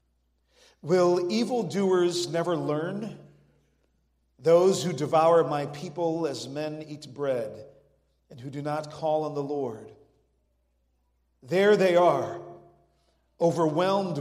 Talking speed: 105 wpm